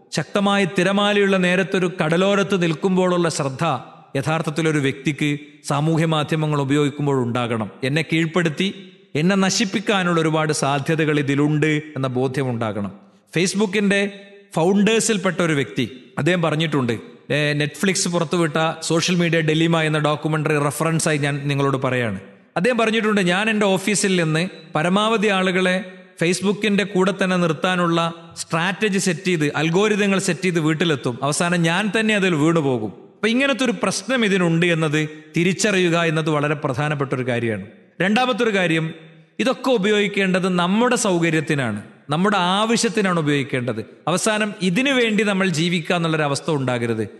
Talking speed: 115 wpm